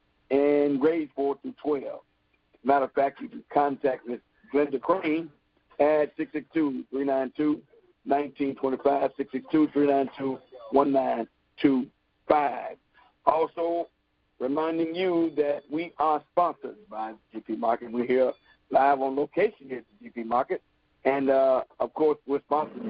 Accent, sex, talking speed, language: American, male, 130 wpm, English